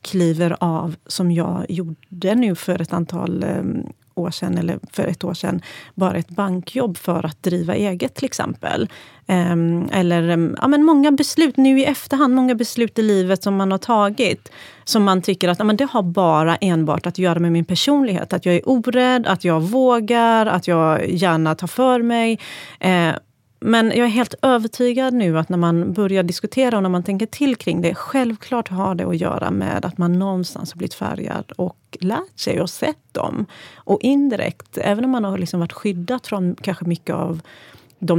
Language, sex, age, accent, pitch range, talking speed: English, female, 30-49, Swedish, 170-225 Hz, 180 wpm